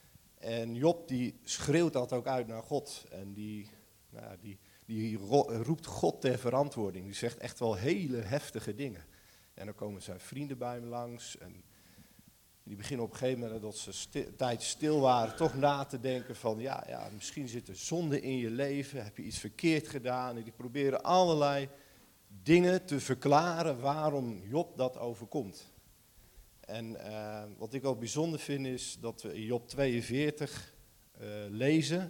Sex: male